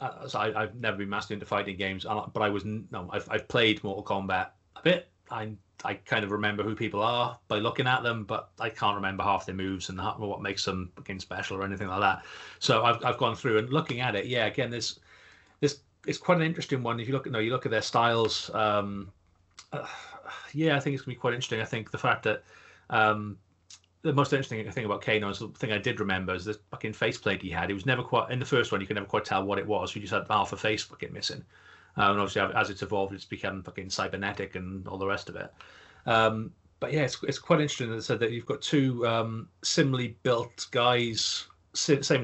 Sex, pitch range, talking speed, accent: male, 100-125 Hz, 240 wpm, British